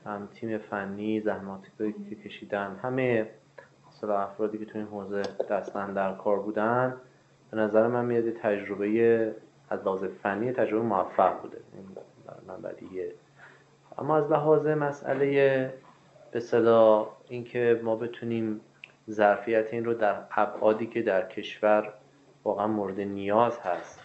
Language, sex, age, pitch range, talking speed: Persian, male, 30-49, 100-120 Hz, 130 wpm